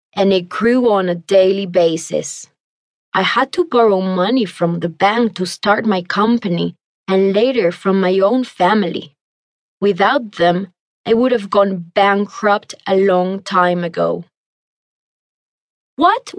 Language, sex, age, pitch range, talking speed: English, female, 20-39, 180-235 Hz, 135 wpm